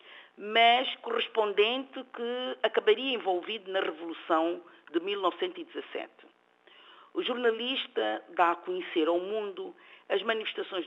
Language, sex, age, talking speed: Portuguese, female, 50-69, 100 wpm